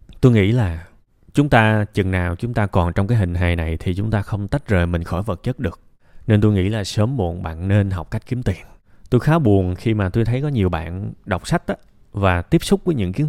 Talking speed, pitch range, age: 255 wpm, 95-120 Hz, 20-39